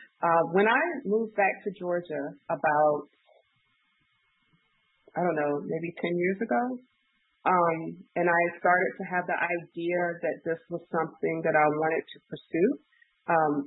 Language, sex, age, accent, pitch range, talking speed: English, female, 30-49, American, 160-200 Hz, 145 wpm